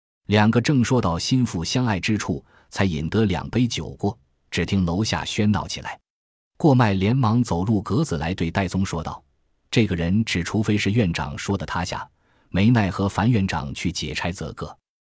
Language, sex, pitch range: Chinese, male, 85-115 Hz